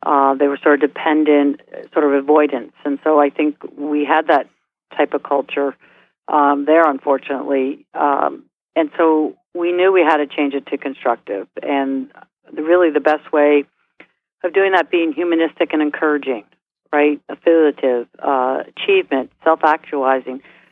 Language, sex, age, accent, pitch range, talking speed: English, female, 50-69, American, 145-180 Hz, 150 wpm